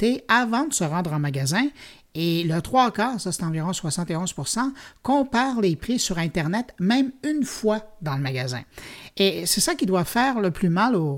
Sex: male